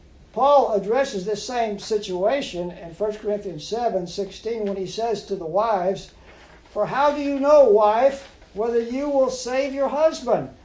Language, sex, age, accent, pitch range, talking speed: English, male, 60-79, American, 175-245 Hz, 160 wpm